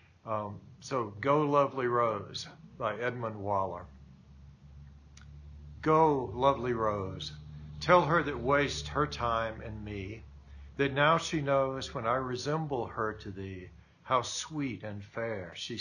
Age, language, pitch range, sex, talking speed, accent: 60-79, English, 100-140 Hz, male, 130 wpm, American